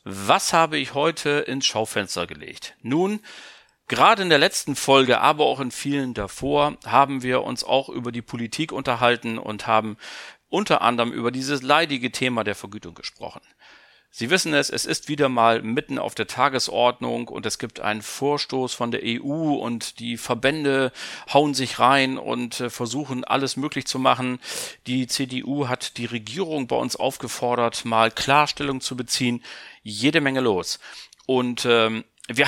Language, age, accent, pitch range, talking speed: German, 40-59, German, 120-145 Hz, 160 wpm